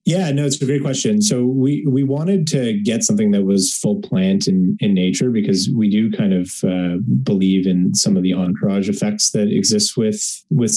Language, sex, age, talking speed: English, male, 30-49, 205 wpm